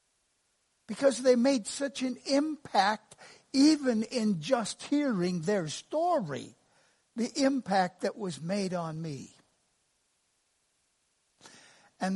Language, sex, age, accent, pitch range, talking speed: English, male, 60-79, American, 185-245 Hz, 100 wpm